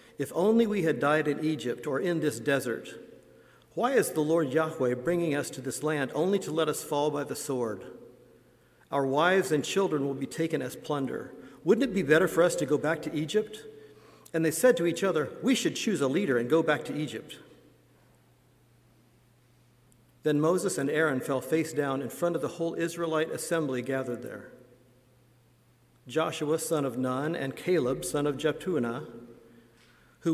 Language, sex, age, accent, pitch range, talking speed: English, male, 50-69, American, 135-175 Hz, 180 wpm